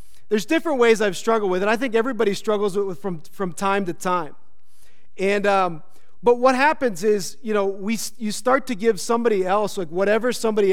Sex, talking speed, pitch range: male, 200 wpm, 170-230 Hz